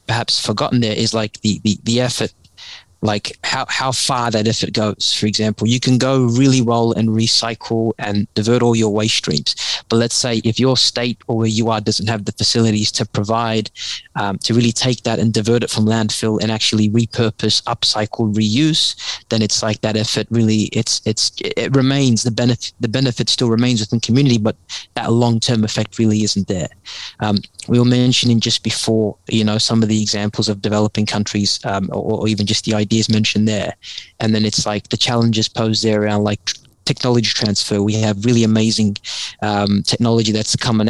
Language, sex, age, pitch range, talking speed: English, male, 20-39, 105-115 Hz, 195 wpm